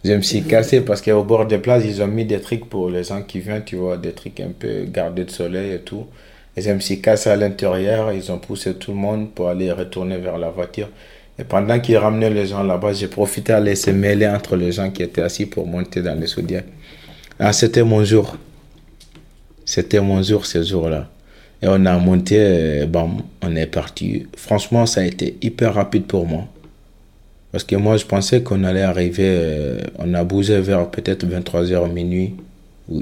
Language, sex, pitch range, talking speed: French, male, 85-100 Hz, 205 wpm